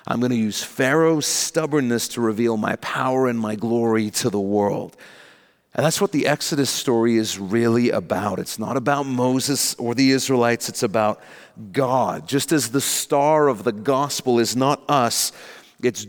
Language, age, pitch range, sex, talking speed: English, 40-59, 115-145 Hz, male, 170 wpm